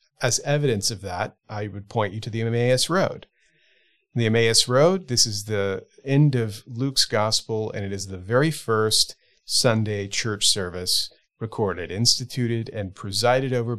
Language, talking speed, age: English, 155 wpm, 40-59